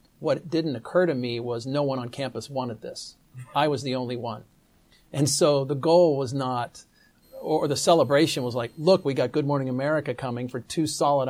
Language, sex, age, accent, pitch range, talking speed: English, male, 40-59, American, 125-155 Hz, 200 wpm